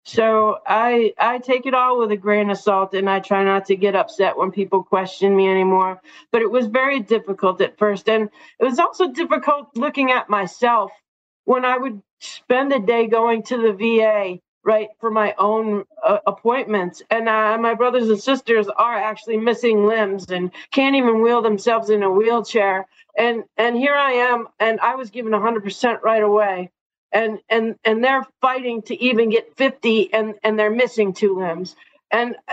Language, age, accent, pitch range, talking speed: English, 40-59, American, 200-235 Hz, 185 wpm